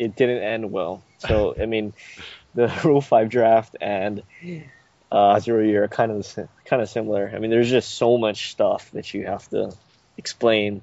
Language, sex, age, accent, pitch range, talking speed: English, male, 20-39, American, 110-125 Hz, 185 wpm